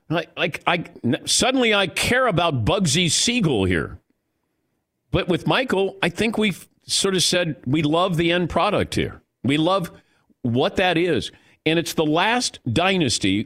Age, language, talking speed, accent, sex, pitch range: 50-69, English, 150 wpm, American, male, 125-180 Hz